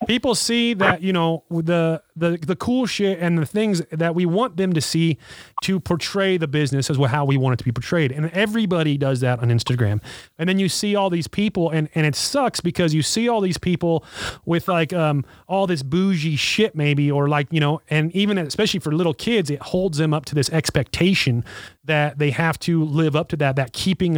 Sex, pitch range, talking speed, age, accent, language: male, 135-170 Hz, 225 wpm, 30-49, American, English